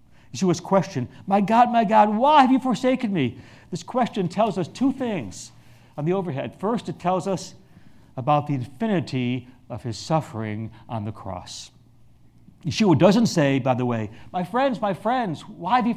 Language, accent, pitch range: English, American, 130-215 Hz